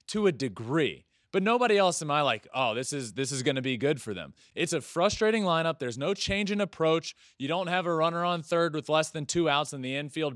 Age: 20-39